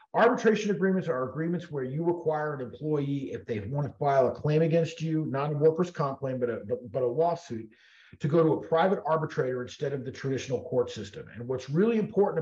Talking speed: 210 wpm